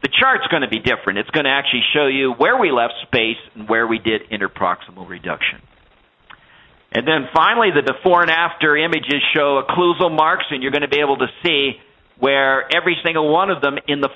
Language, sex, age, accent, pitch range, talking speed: English, male, 50-69, American, 125-180 Hz, 210 wpm